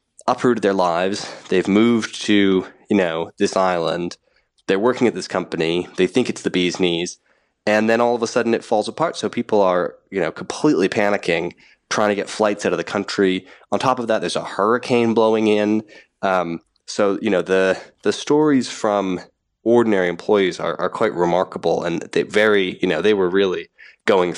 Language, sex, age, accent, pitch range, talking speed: English, male, 20-39, American, 90-110 Hz, 190 wpm